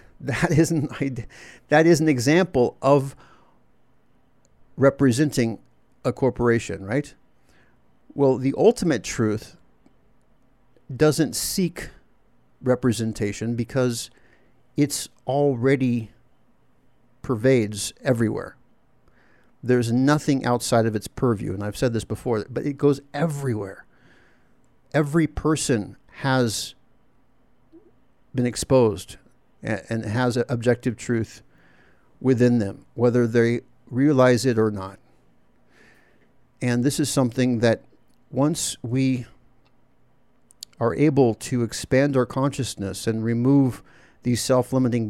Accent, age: American, 50-69